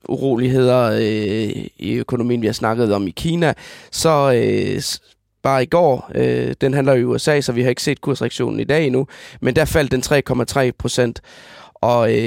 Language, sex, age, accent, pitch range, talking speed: Danish, male, 20-39, native, 120-160 Hz, 160 wpm